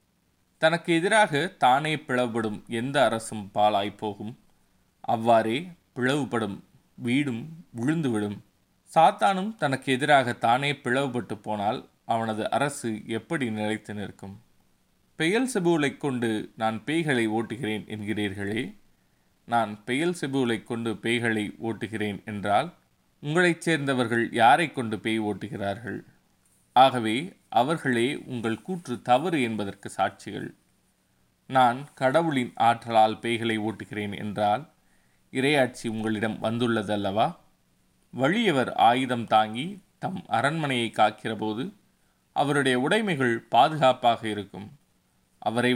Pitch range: 105-130 Hz